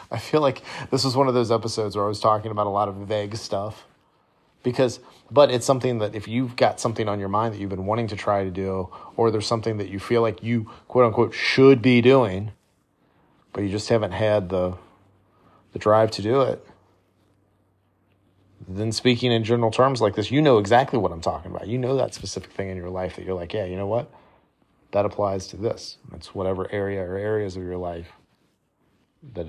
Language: English